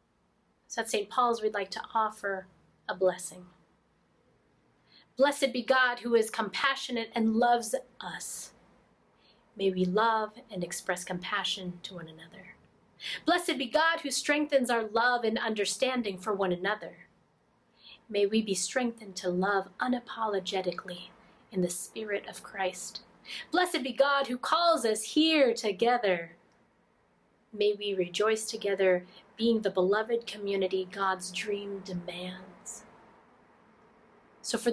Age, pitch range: 30-49, 185-230 Hz